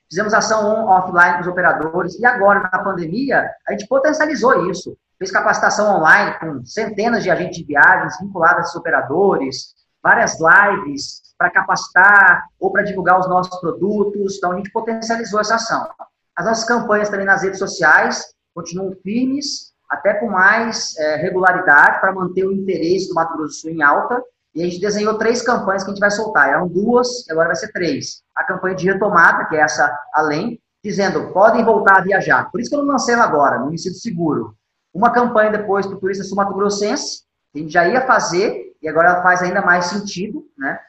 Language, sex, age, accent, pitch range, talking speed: Portuguese, male, 20-39, Brazilian, 175-220 Hz, 185 wpm